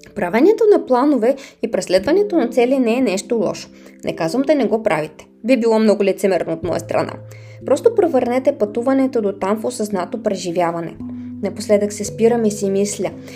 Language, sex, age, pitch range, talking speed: Bulgarian, female, 20-39, 185-245 Hz, 170 wpm